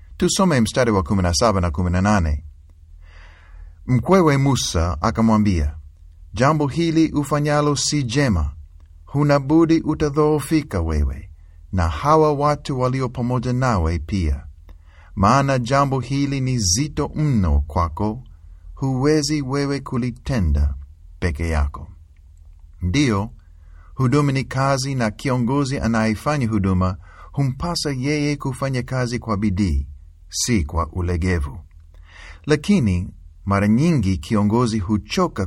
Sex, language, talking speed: male, Swahili, 100 wpm